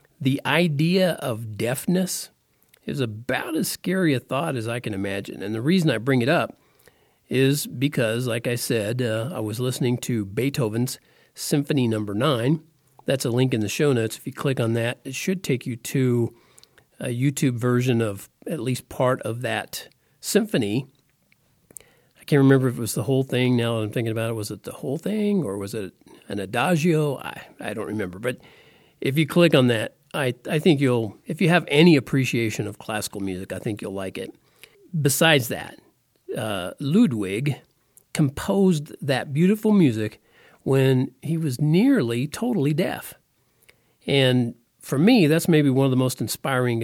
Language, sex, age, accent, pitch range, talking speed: English, male, 50-69, American, 120-155 Hz, 175 wpm